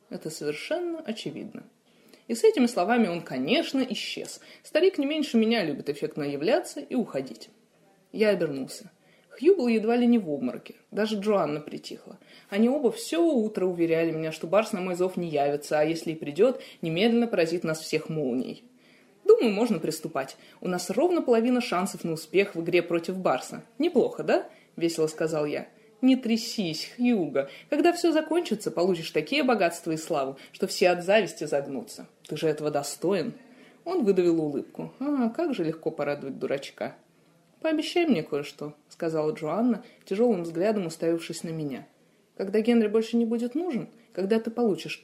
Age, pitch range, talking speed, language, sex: 20-39, 165-245 Hz, 160 wpm, Russian, female